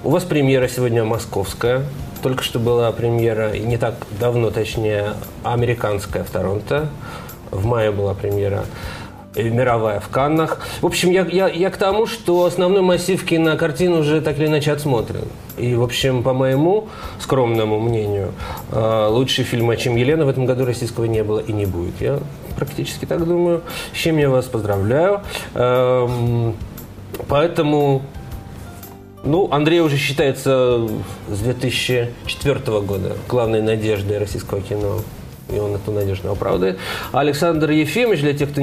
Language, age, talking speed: Russian, 20-39, 145 wpm